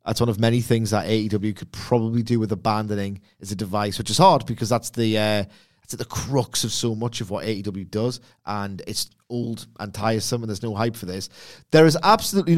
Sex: male